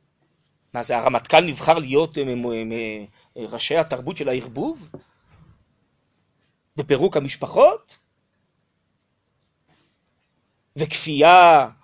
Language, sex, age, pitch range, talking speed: Hebrew, male, 30-49, 165-250 Hz, 75 wpm